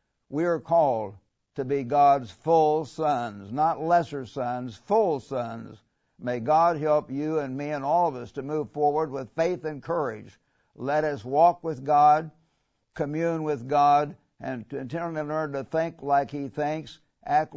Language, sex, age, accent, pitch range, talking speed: English, male, 60-79, American, 135-155 Hz, 160 wpm